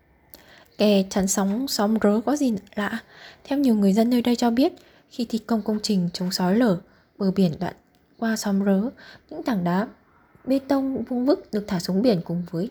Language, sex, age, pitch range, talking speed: Vietnamese, female, 20-39, 185-230 Hz, 205 wpm